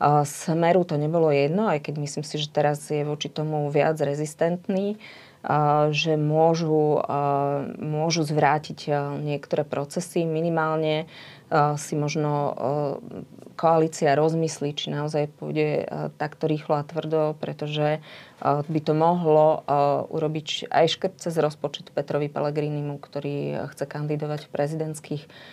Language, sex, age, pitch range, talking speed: Slovak, female, 30-49, 145-160 Hz, 115 wpm